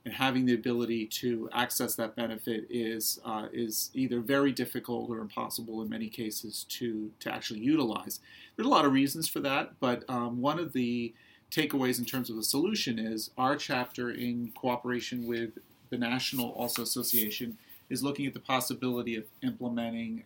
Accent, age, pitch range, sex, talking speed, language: American, 30-49, 115-130 Hz, male, 170 wpm, English